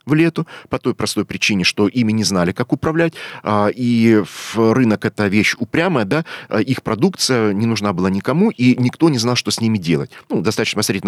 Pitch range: 100-125 Hz